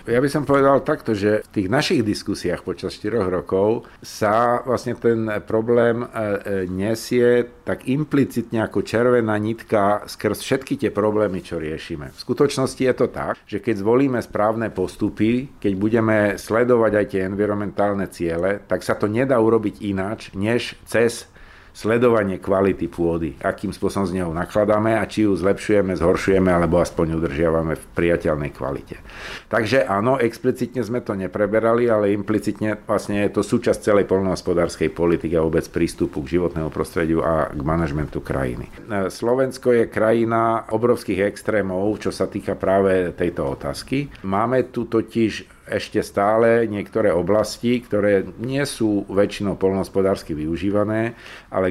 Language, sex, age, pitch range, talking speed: Slovak, male, 50-69, 95-115 Hz, 145 wpm